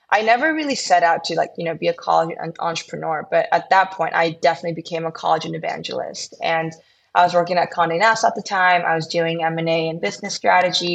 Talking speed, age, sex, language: 225 wpm, 20-39, female, English